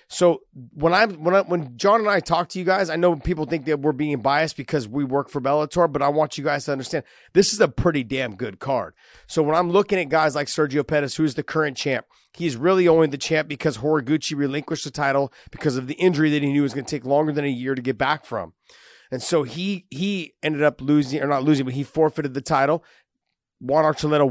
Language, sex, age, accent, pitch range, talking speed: English, male, 30-49, American, 140-170 Hz, 245 wpm